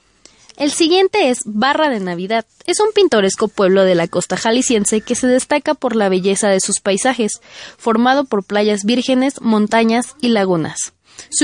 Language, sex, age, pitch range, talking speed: Spanish, female, 20-39, 200-270 Hz, 165 wpm